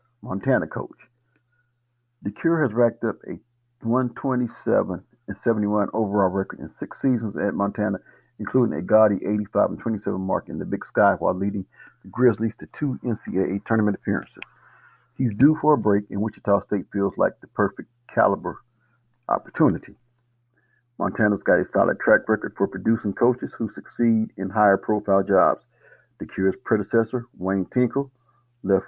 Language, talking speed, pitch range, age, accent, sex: English, 140 wpm, 100-120 Hz, 50-69, American, male